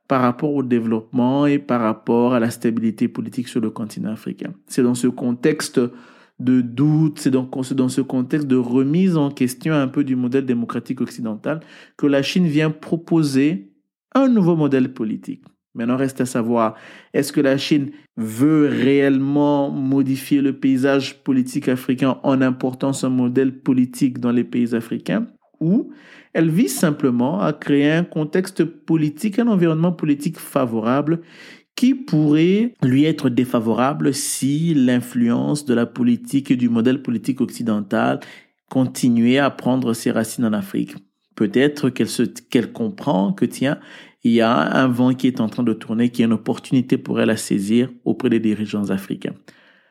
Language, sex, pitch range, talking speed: French, male, 125-155 Hz, 160 wpm